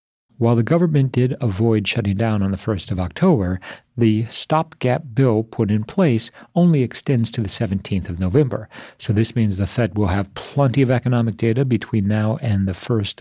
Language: English